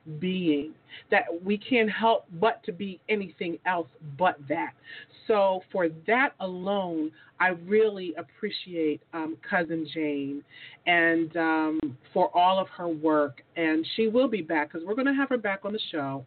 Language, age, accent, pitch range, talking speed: English, 40-59, American, 155-205 Hz, 160 wpm